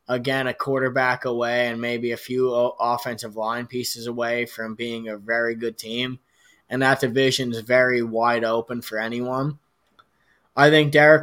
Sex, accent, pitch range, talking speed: male, American, 120-145 Hz, 160 wpm